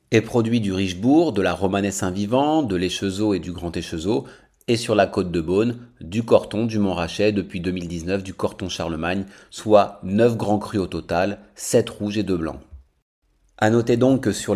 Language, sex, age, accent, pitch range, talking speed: French, male, 40-59, French, 90-110 Hz, 180 wpm